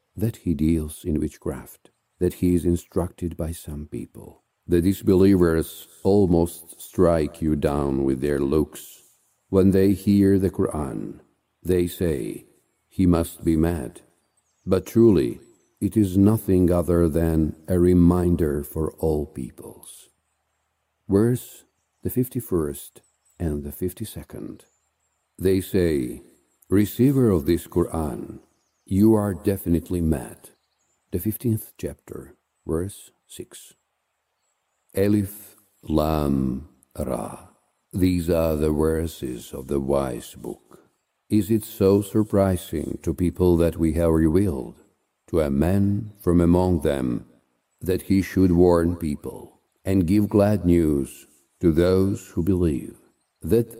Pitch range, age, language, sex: 80-95 Hz, 50-69, English, male